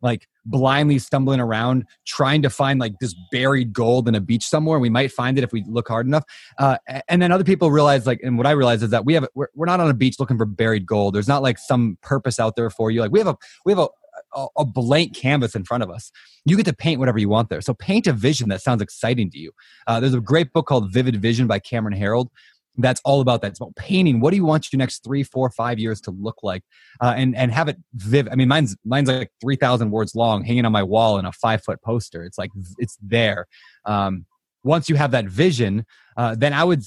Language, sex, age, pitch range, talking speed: English, male, 20-39, 115-150 Hz, 250 wpm